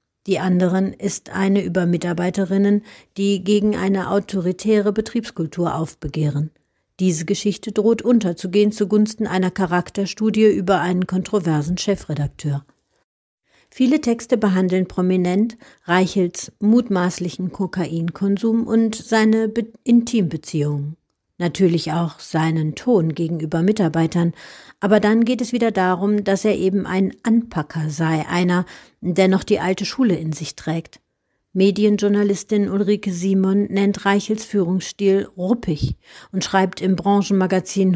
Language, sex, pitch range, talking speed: German, female, 175-210 Hz, 115 wpm